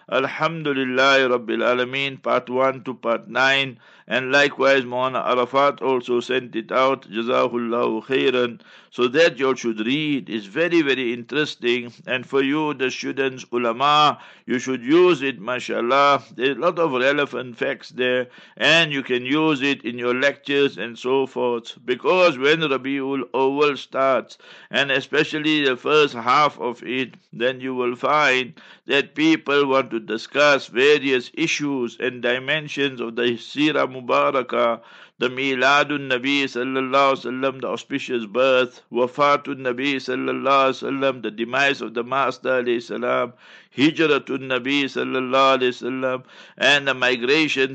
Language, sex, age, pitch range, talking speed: English, male, 60-79, 125-140 Hz, 140 wpm